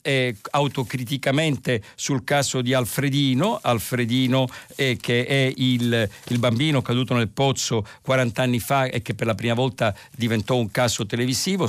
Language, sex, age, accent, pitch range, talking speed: Italian, male, 50-69, native, 120-145 Hz, 150 wpm